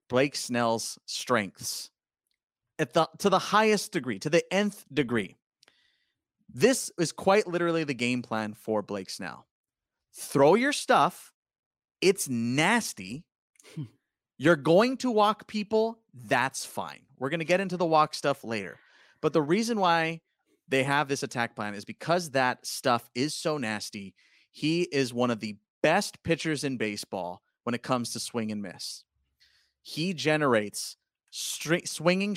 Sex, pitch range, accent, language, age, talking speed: male, 120-165 Hz, American, English, 30-49, 145 wpm